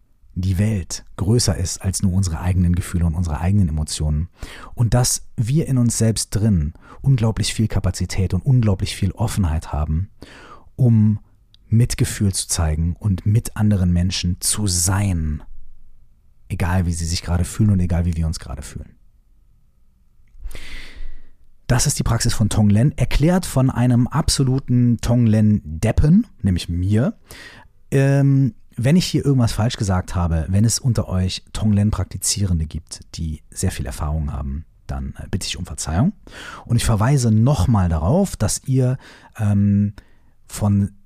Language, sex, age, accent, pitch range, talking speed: German, male, 40-59, German, 85-115 Hz, 140 wpm